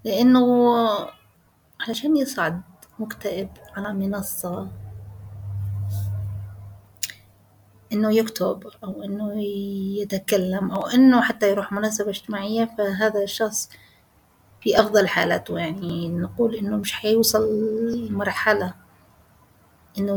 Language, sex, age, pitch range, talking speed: Arabic, female, 30-49, 185-220 Hz, 85 wpm